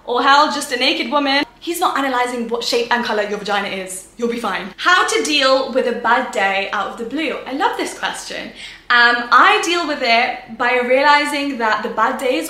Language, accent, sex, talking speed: English, British, female, 215 wpm